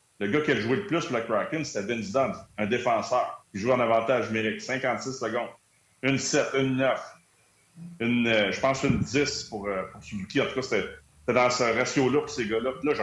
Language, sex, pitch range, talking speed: French, male, 110-140 Hz, 260 wpm